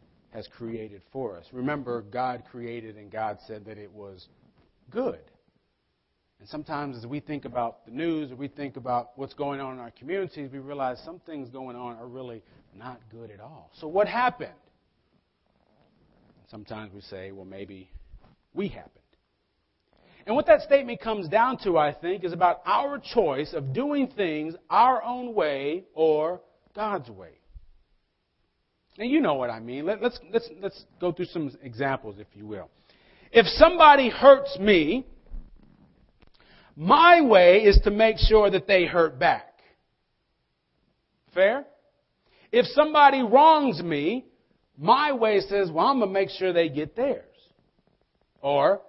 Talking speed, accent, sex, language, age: 155 wpm, American, male, English, 40-59